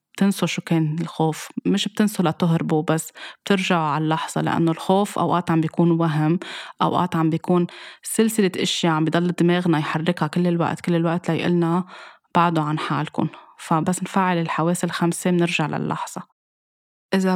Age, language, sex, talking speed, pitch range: 20-39, Arabic, female, 140 wpm, 155-180 Hz